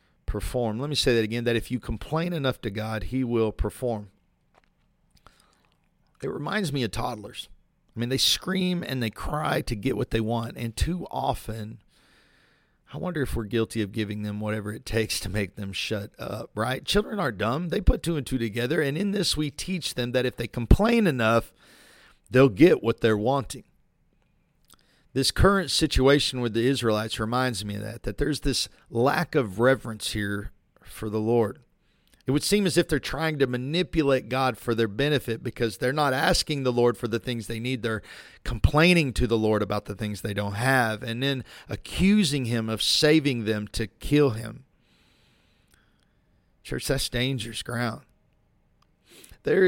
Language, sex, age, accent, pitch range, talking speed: English, male, 50-69, American, 110-145 Hz, 180 wpm